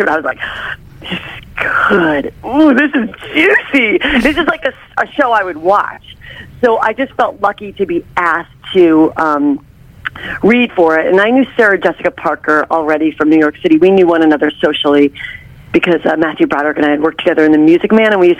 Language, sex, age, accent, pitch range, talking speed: English, female, 40-59, American, 155-225 Hz, 210 wpm